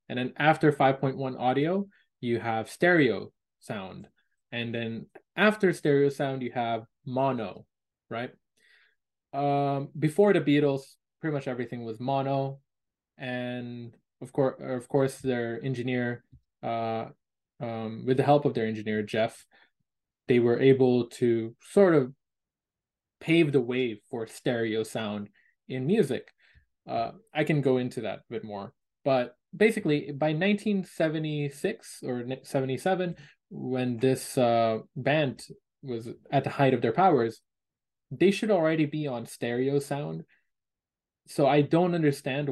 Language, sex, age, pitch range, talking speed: English, male, 20-39, 120-145 Hz, 135 wpm